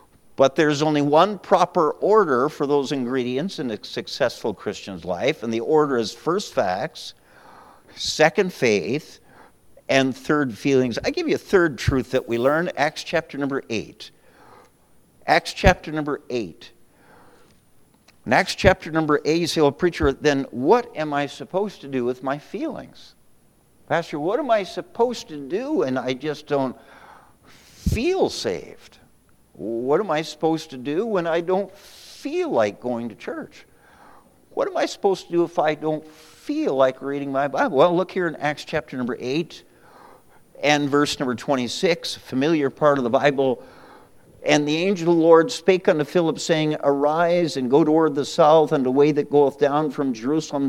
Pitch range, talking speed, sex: 135-165 Hz, 170 wpm, male